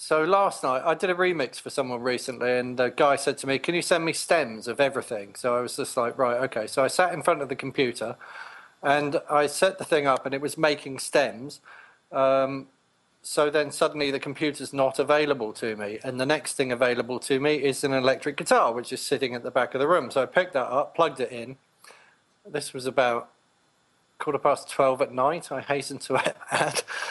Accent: British